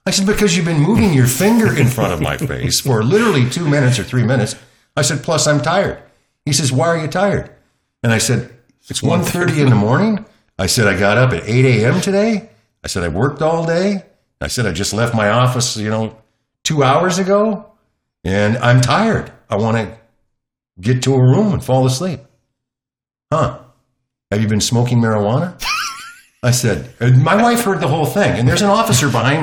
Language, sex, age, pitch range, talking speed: English, male, 50-69, 120-170 Hz, 200 wpm